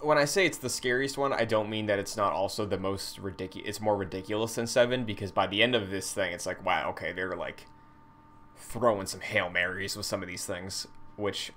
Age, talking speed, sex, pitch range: 20-39, 235 wpm, male, 100-115 Hz